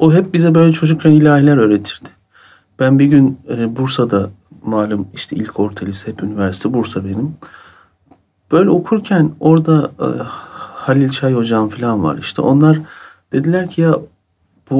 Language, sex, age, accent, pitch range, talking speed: Turkish, male, 40-59, native, 105-155 Hz, 140 wpm